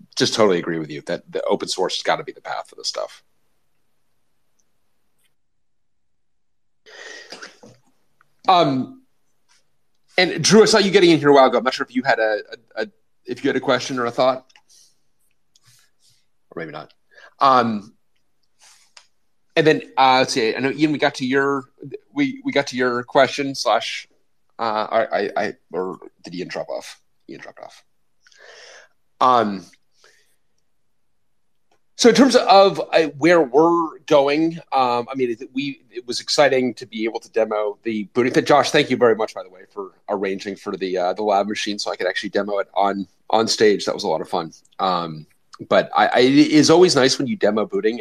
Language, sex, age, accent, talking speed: English, male, 40-59, American, 185 wpm